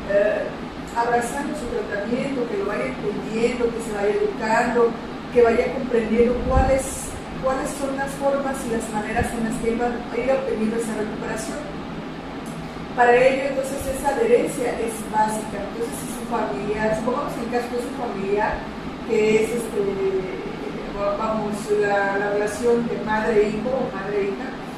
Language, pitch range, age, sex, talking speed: Spanish, 215-245 Hz, 40-59, female, 145 wpm